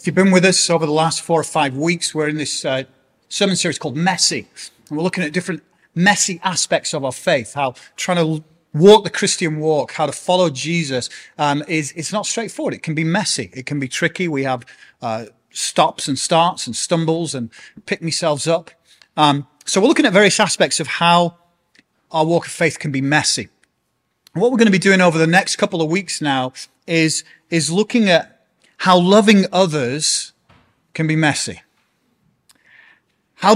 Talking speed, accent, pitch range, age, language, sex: 190 wpm, British, 140-180 Hz, 30-49, English, male